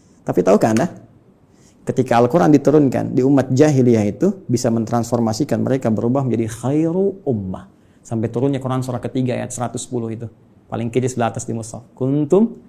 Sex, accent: male, native